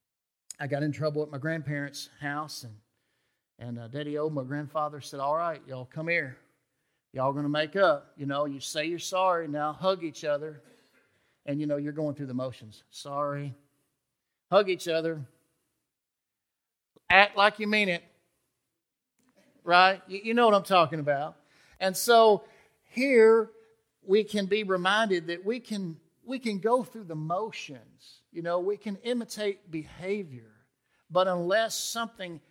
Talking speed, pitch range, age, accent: 155 wpm, 145-185 Hz, 50-69, American